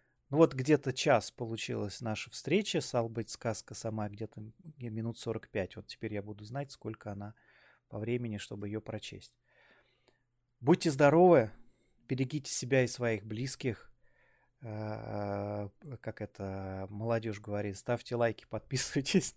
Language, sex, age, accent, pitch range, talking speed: Russian, male, 20-39, native, 105-125 Hz, 125 wpm